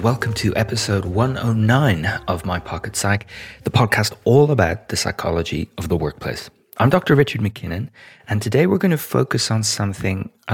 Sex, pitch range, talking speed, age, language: male, 90-115 Hz, 170 wpm, 30-49, English